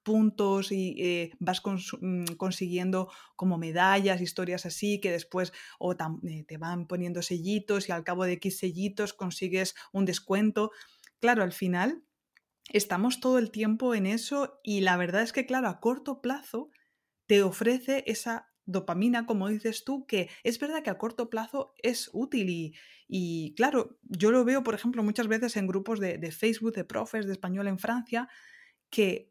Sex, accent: female, Spanish